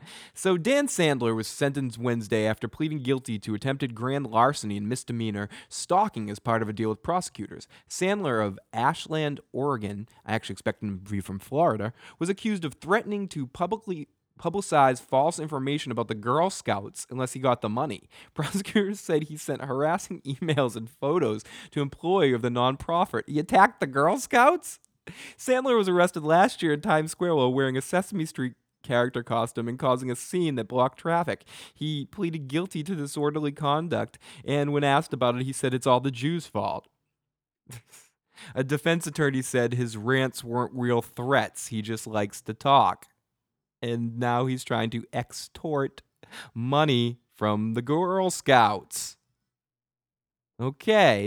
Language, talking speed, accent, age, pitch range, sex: English, 160 wpm, American, 20-39, 120-160 Hz, male